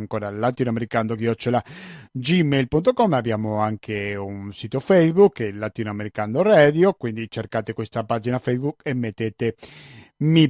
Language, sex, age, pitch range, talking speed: Italian, male, 40-59, 115-150 Hz, 110 wpm